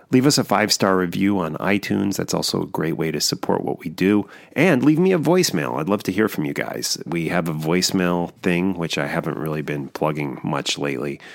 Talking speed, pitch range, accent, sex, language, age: 220 wpm, 80-100 Hz, American, male, English, 30-49